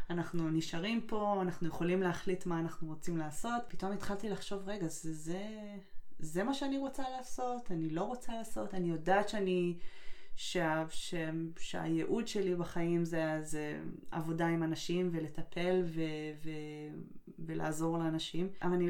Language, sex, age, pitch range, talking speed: Hebrew, female, 20-39, 165-200 Hz, 150 wpm